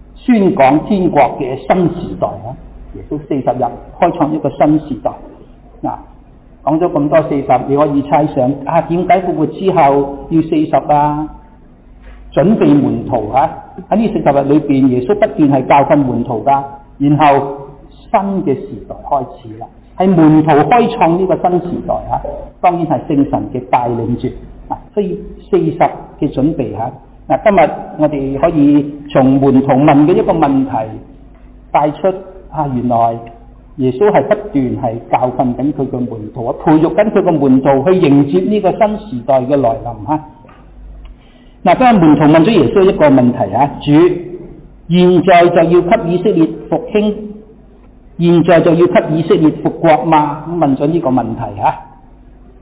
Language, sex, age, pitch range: Chinese, male, 50-69, 135-180 Hz